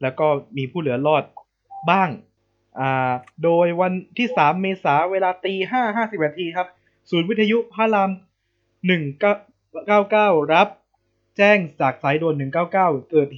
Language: Thai